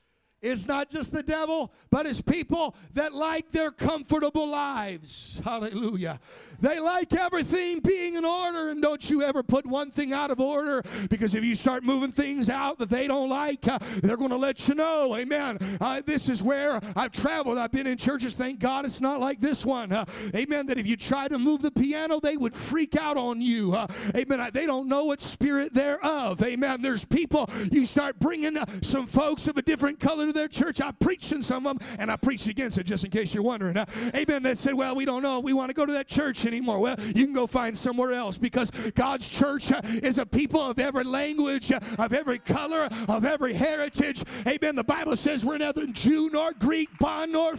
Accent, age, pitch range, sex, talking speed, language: American, 50-69, 245-295 Hz, male, 215 wpm, English